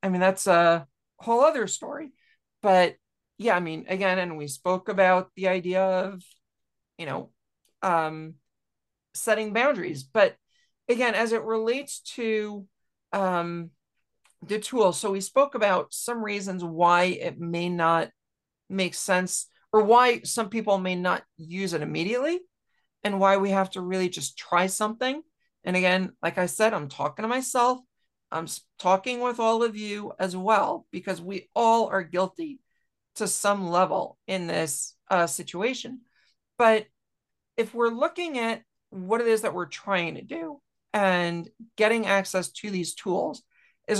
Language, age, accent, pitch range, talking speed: English, 50-69, American, 180-225 Hz, 155 wpm